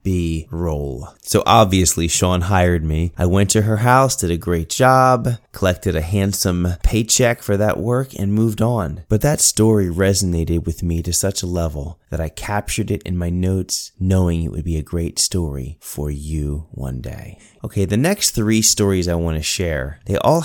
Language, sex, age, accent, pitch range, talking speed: English, male, 30-49, American, 85-105 Hz, 190 wpm